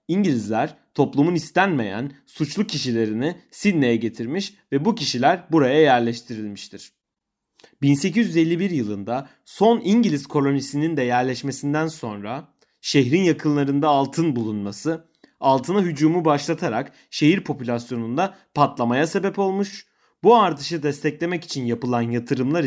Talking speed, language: 100 wpm, Turkish